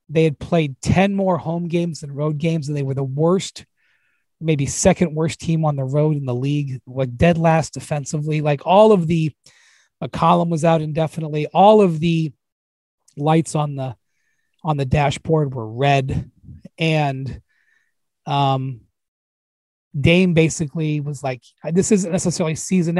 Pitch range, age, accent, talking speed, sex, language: 140-170 Hz, 30-49, American, 155 wpm, male, English